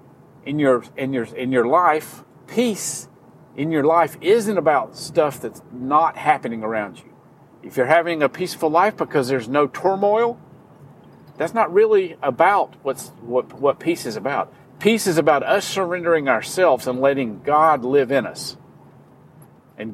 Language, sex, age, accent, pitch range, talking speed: English, male, 50-69, American, 135-190 Hz, 155 wpm